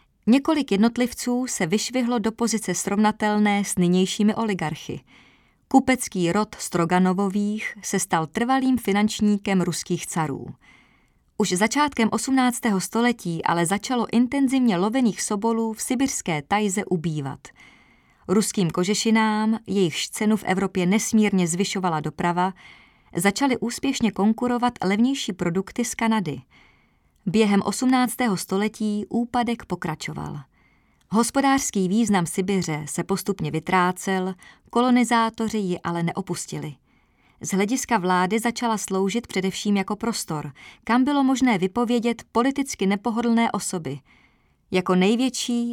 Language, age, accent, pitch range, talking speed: Czech, 30-49, native, 185-235 Hz, 105 wpm